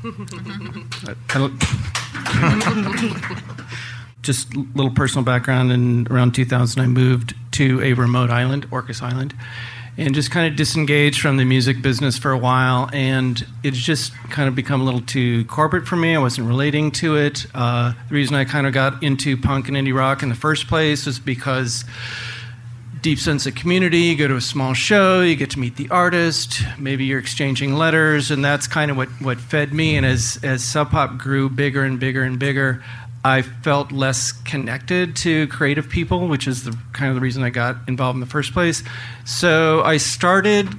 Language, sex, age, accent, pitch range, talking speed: English, male, 40-59, American, 125-150 Hz, 185 wpm